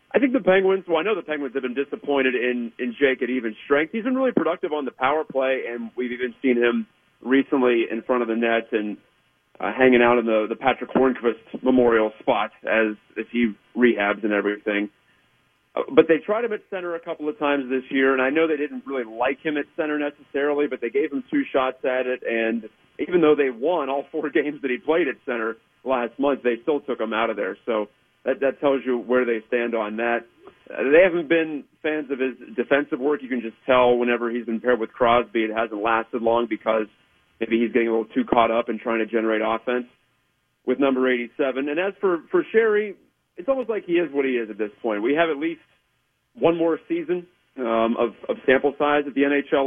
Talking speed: 225 wpm